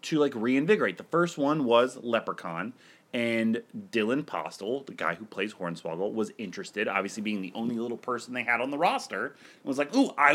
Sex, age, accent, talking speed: male, 30-49, American, 190 wpm